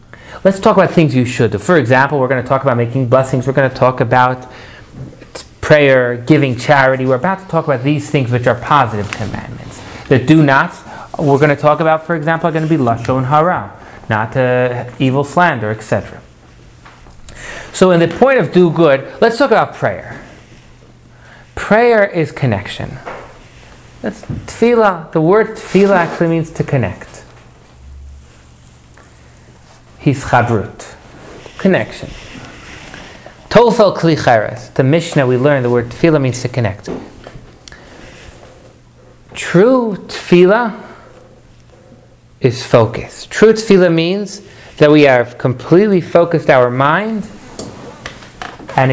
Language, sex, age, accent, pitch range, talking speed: English, male, 30-49, American, 125-170 Hz, 130 wpm